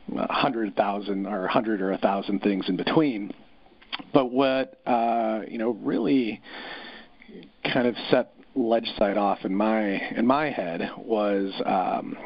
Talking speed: 140 wpm